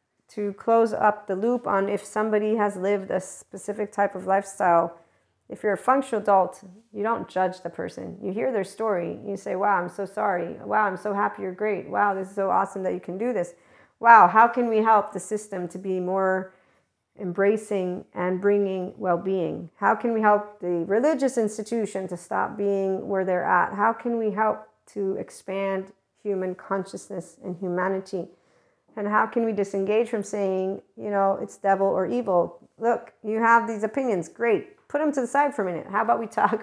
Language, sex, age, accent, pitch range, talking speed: English, female, 40-59, American, 185-220 Hz, 195 wpm